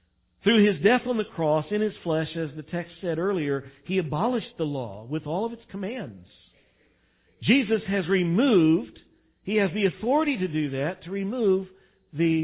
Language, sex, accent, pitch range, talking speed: English, male, American, 140-195 Hz, 175 wpm